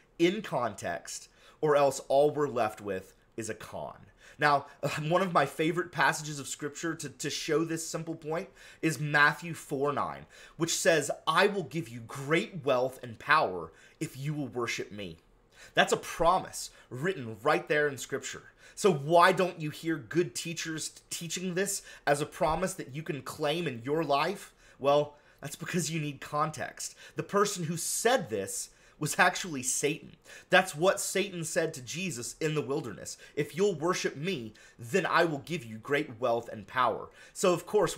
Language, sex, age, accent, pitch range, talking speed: English, male, 30-49, American, 140-175 Hz, 175 wpm